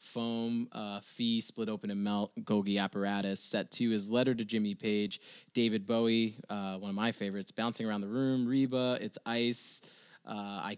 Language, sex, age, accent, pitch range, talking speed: English, male, 20-39, American, 100-125 Hz, 180 wpm